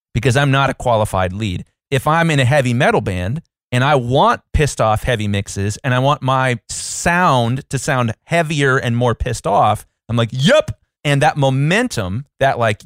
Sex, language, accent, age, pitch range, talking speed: male, English, American, 30-49, 115-155 Hz, 185 wpm